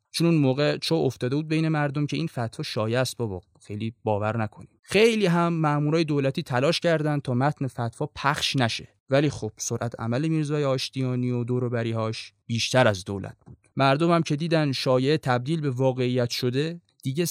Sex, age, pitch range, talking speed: male, 20-39, 125-160 Hz, 175 wpm